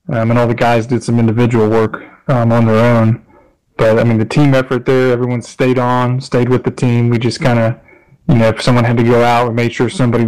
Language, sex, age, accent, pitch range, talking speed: English, male, 20-39, American, 115-130 Hz, 250 wpm